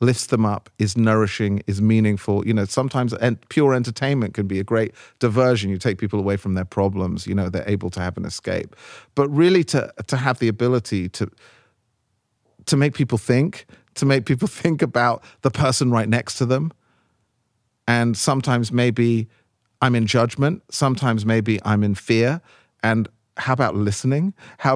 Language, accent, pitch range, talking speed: English, British, 105-135 Hz, 170 wpm